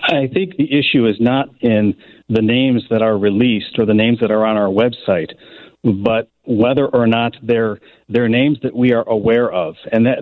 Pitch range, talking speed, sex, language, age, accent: 110-135 Hz, 200 wpm, male, English, 50-69, American